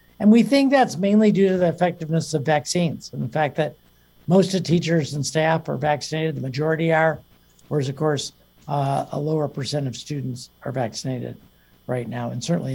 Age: 60-79